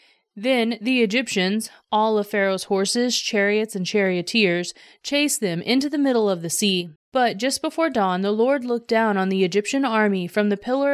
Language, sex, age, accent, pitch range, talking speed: English, female, 30-49, American, 195-245 Hz, 180 wpm